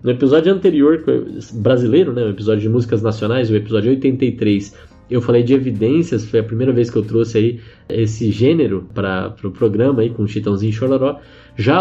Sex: male